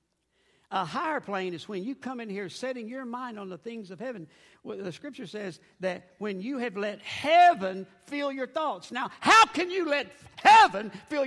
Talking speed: 190 wpm